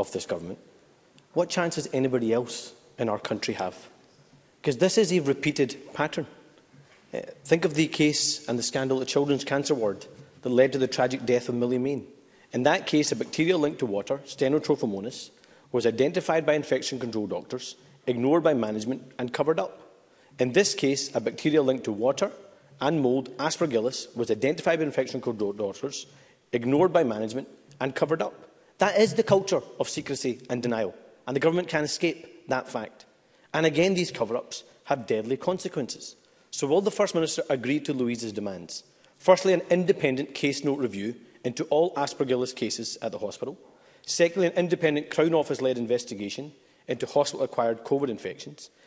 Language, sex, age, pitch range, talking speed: English, male, 40-59, 125-165 Hz, 165 wpm